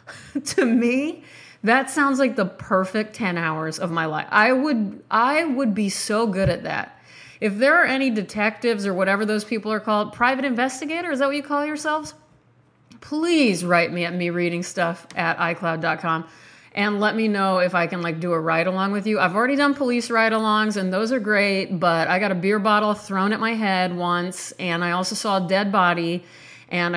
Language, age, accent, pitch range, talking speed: English, 30-49, American, 180-230 Hz, 205 wpm